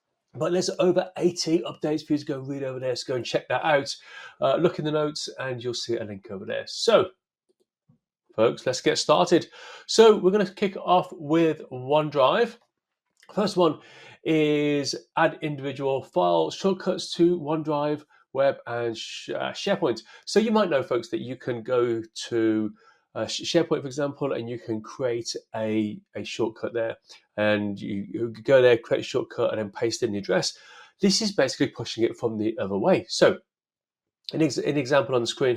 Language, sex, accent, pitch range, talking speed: English, male, British, 115-175 Hz, 180 wpm